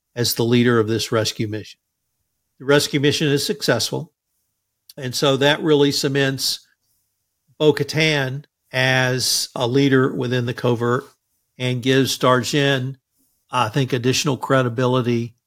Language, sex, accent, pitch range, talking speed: English, male, American, 120-145 Hz, 120 wpm